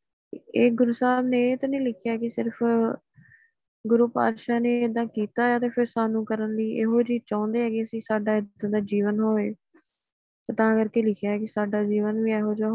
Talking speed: 195 wpm